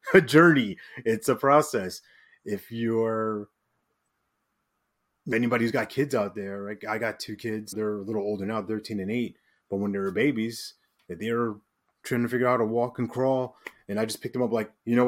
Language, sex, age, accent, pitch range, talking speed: English, male, 30-49, American, 105-125 Hz, 200 wpm